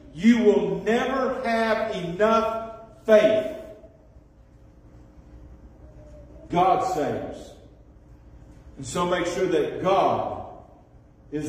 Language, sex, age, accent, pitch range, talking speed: English, male, 50-69, American, 140-195 Hz, 80 wpm